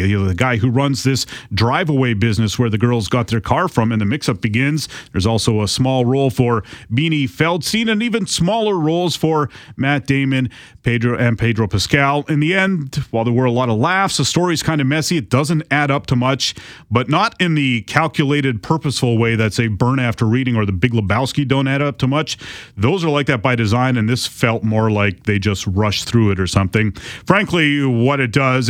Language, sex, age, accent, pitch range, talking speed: English, male, 30-49, American, 115-145 Hz, 210 wpm